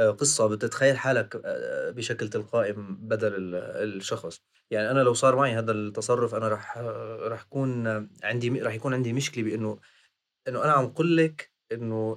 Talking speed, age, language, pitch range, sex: 140 wpm, 30-49, Arabic, 110-135 Hz, male